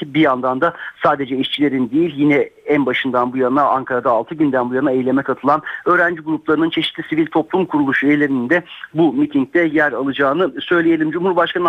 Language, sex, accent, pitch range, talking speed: Turkish, male, native, 135-170 Hz, 165 wpm